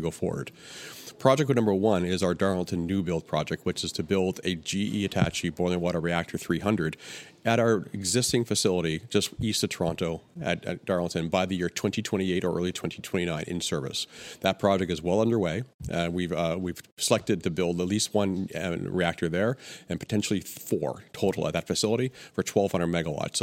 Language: Swedish